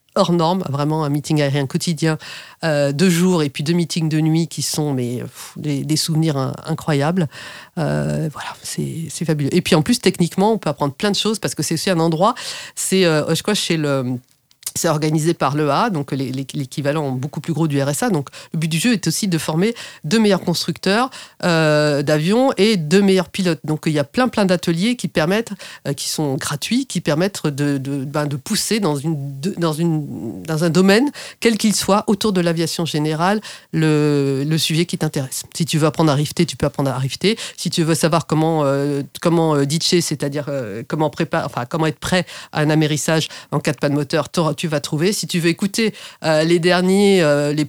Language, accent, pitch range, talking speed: French, French, 145-180 Hz, 215 wpm